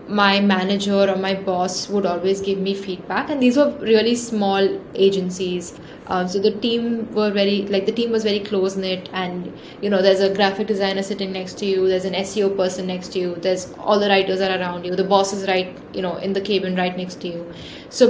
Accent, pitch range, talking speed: Indian, 185-215 Hz, 225 wpm